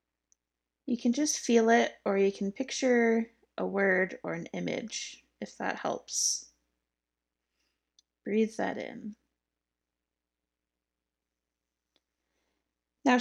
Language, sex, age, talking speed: English, female, 20-39, 95 wpm